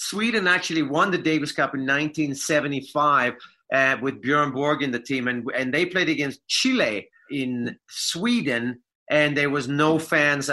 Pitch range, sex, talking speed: 130-155 Hz, male, 160 wpm